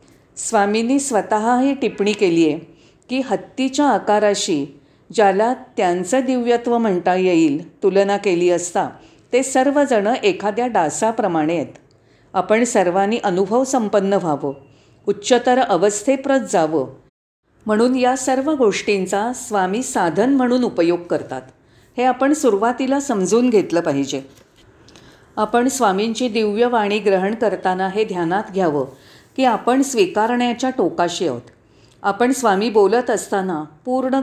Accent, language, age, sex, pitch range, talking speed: native, Marathi, 40-59, female, 185-245 Hz, 110 wpm